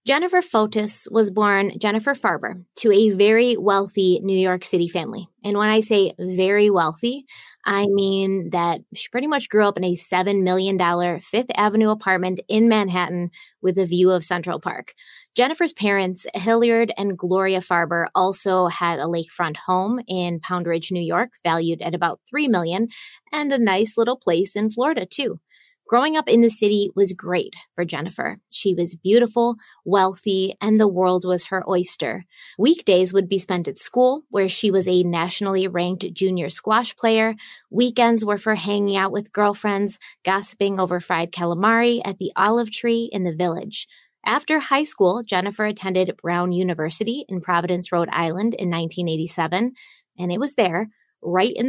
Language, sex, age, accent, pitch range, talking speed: English, female, 20-39, American, 180-225 Hz, 165 wpm